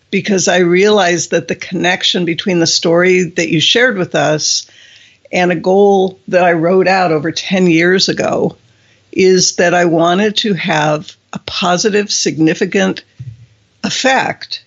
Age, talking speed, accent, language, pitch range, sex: 60-79, 145 wpm, American, English, 155-185 Hz, female